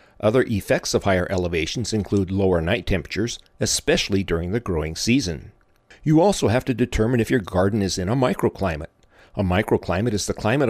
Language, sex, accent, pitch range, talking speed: English, male, American, 95-115 Hz, 175 wpm